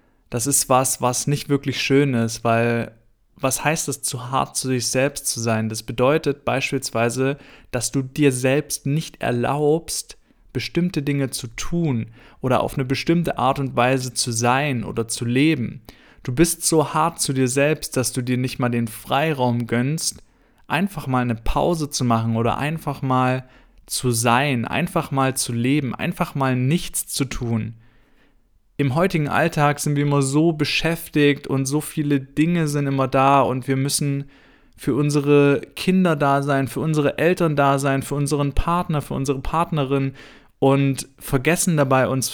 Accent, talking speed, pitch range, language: German, 165 wpm, 125-145 Hz, German